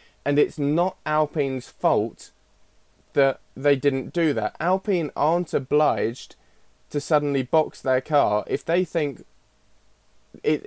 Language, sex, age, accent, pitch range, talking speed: English, male, 20-39, British, 120-155 Hz, 125 wpm